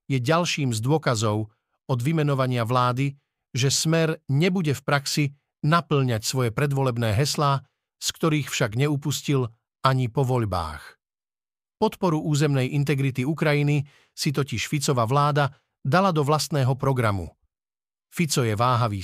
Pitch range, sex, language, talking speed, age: 130-155 Hz, male, Slovak, 120 wpm, 50-69